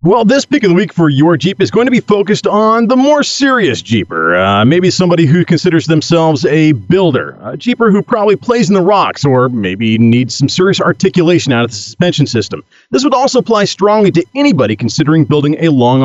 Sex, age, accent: male, 40-59, American